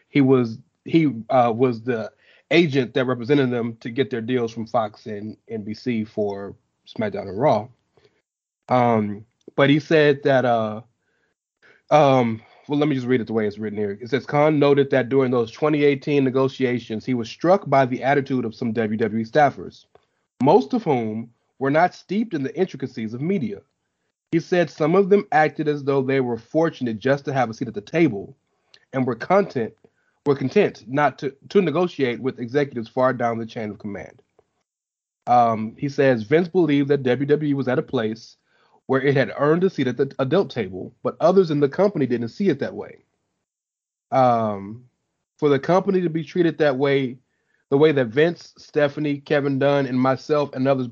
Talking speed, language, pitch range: 185 wpm, English, 120-150 Hz